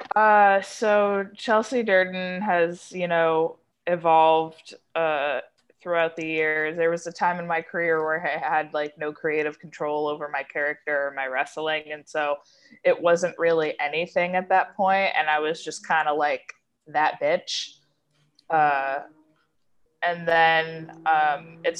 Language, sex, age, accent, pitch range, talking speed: English, female, 20-39, American, 150-175 Hz, 150 wpm